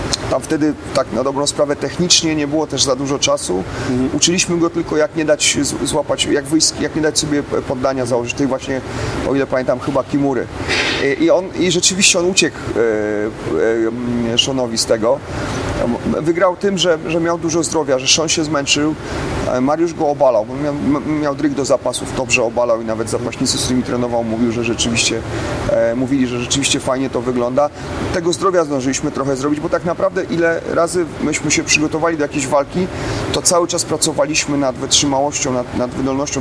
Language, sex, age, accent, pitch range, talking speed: Polish, male, 30-49, native, 135-170 Hz, 180 wpm